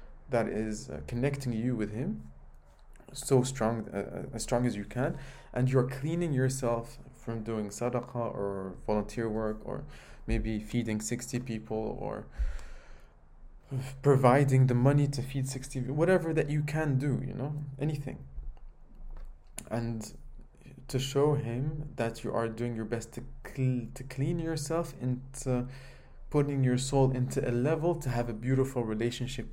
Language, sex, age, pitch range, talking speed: English, male, 20-39, 110-140 Hz, 150 wpm